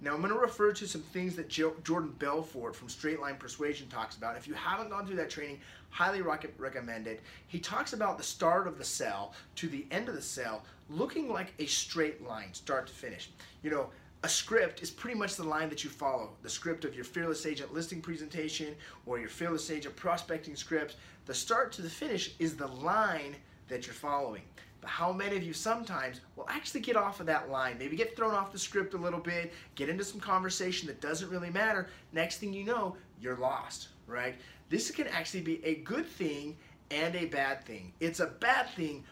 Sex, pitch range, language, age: male, 145-195 Hz, English, 30-49